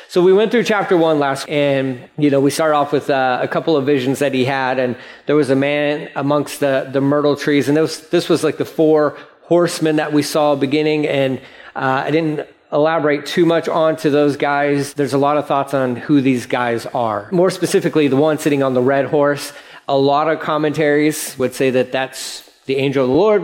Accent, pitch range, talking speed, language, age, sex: American, 130-160 Hz, 225 wpm, English, 40-59, male